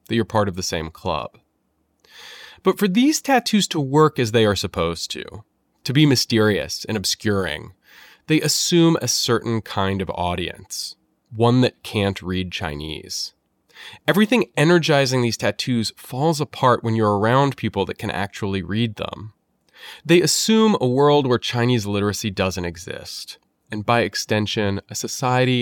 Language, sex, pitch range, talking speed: English, male, 95-135 Hz, 150 wpm